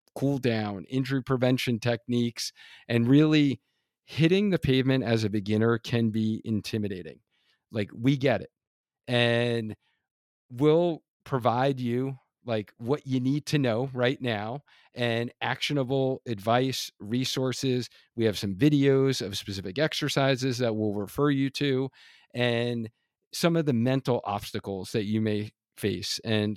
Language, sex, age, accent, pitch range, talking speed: English, male, 40-59, American, 115-135 Hz, 135 wpm